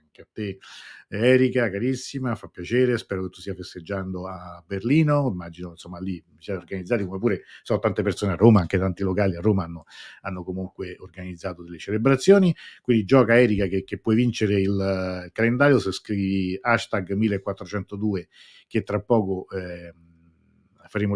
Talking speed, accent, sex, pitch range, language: 155 wpm, native, male, 95-115 Hz, Italian